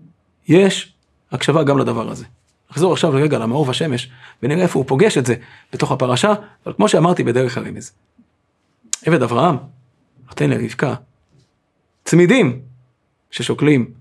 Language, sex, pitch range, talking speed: Hebrew, male, 125-160 Hz, 125 wpm